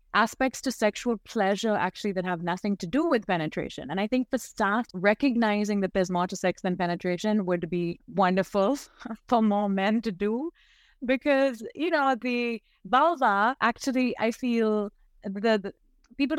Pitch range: 180-230 Hz